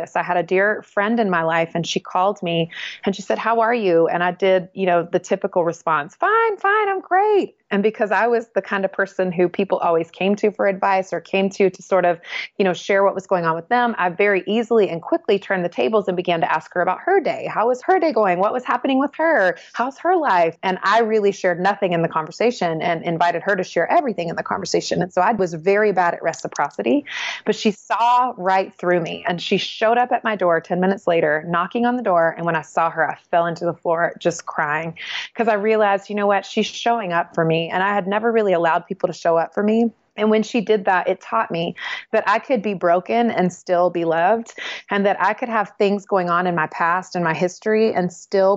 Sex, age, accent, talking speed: female, 30-49, American, 250 wpm